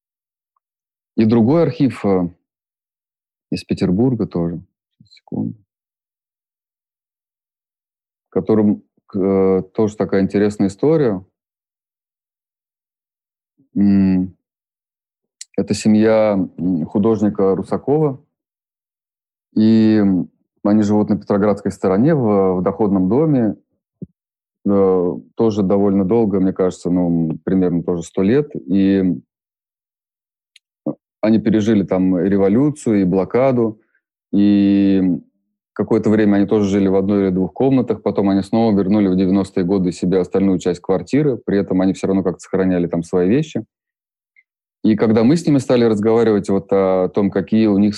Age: 30-49